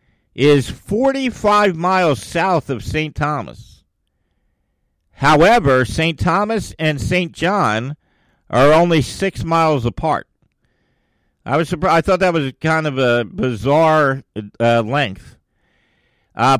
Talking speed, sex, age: 115 wpm, male, 50-69